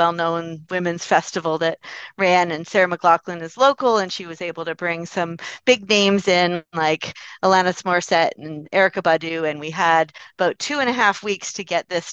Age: 40-59